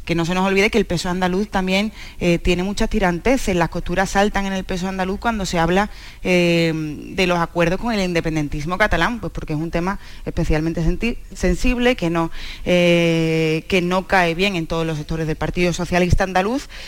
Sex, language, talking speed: female, Spanish, 200 wpm